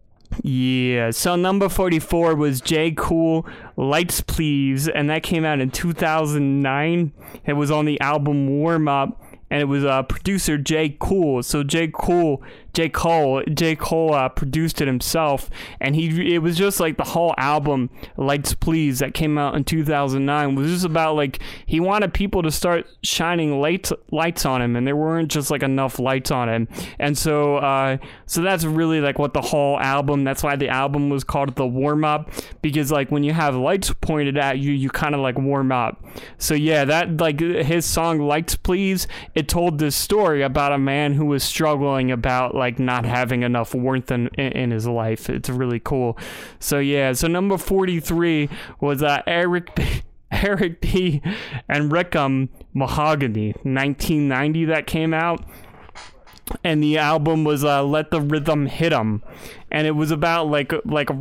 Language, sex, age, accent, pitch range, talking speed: English, male, 20-39, American, 135-165 Hz, 180 wpm